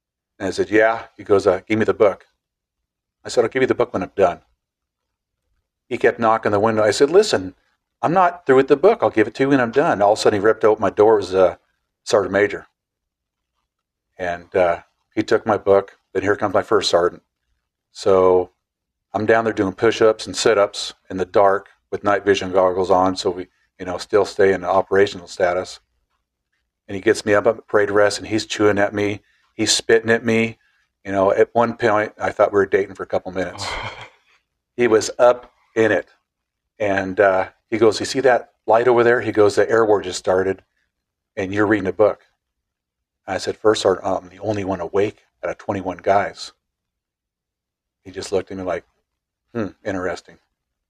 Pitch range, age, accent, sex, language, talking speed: 95-115 Hz, 50-69, American, male, English, 205 wpm